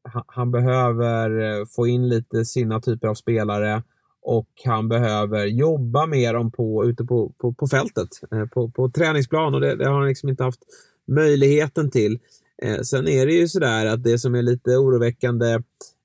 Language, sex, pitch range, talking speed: Swedish, male, 115-130 Hz, 170 wpm